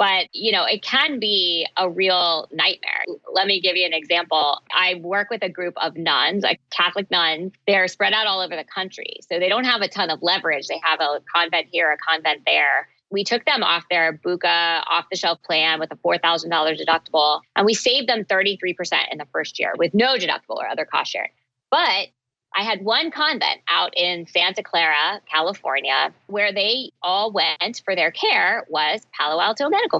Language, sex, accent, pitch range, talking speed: English, female, American, 170-230 Hz, 195 wpm